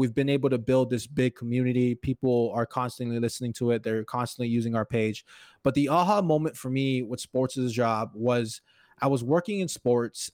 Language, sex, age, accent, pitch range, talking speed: English, male, 20-39, American, 120-140 Hz, 210 wpm